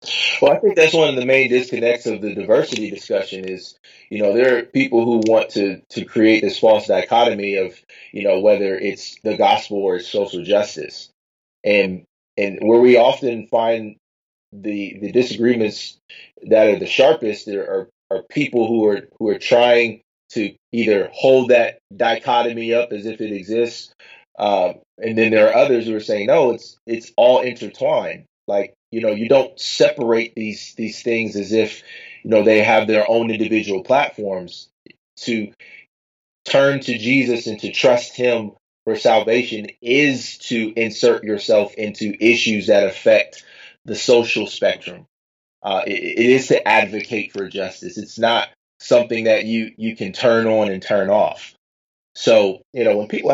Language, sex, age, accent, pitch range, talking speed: English, male, 30-49, American, 110-120 Hz, 170 wpm